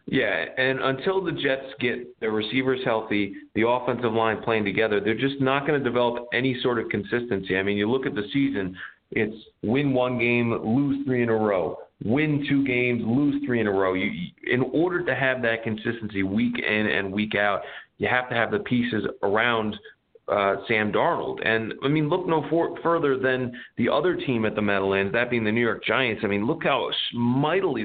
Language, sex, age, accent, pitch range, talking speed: English, male, 40-59, American, 100-125 Hz, 200 wpm